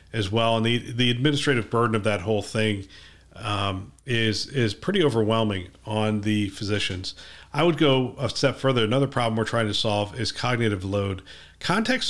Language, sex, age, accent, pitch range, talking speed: English, male, 40-59, American, 105-130 Hz, 175 wpm